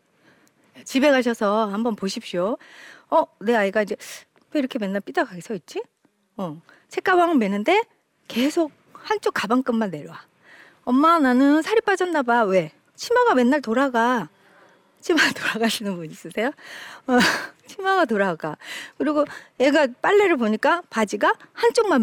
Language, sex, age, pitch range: Korean, female, 40-59, 205-315 Hz